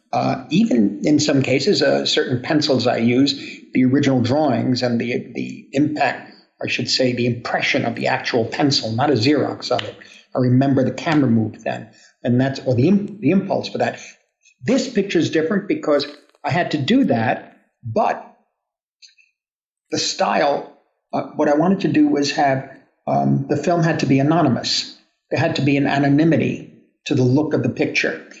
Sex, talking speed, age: male, 180 wpm, 50-69